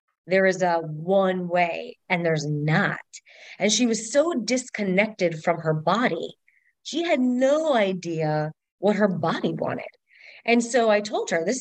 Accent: American